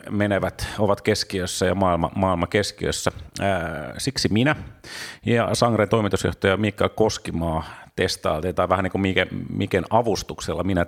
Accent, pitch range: native, 90-105 Hz